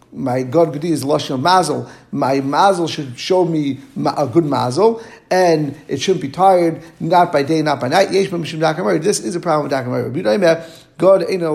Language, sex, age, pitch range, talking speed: English, male, 50-69, 130-165 Hz, 185 wpm